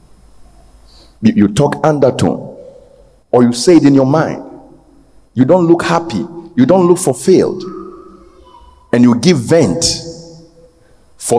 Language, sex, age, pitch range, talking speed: English, male, 50-69, 115-165 Hz, 120 wpm